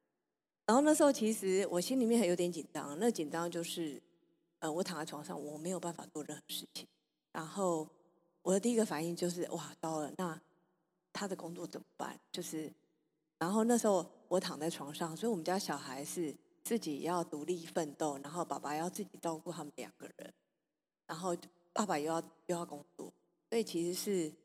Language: Chinese